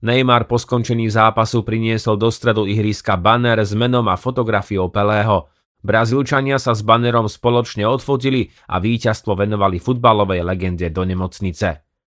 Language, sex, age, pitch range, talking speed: Slovak, male, 30-49, 100-125 Hz, 135 wpm